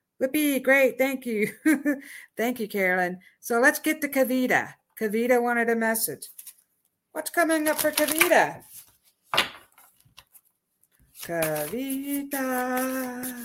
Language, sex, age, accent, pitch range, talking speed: English, female, 60-79, American, 220-295 Hz, 100 wpm